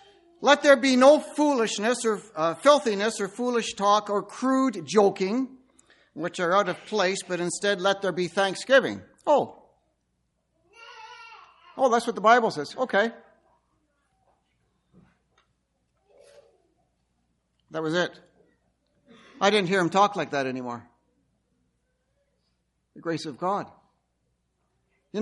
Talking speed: 115 wpm